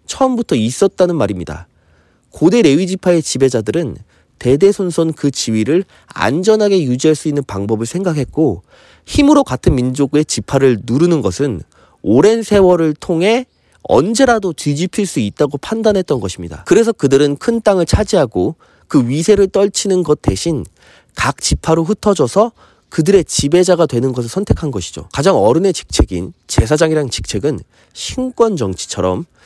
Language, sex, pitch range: Korean, male, 115-185 Hz